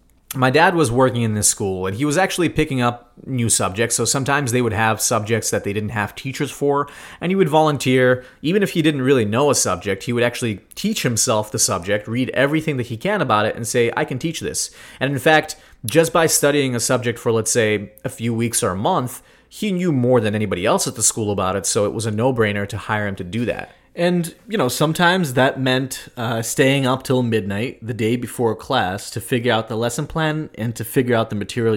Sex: male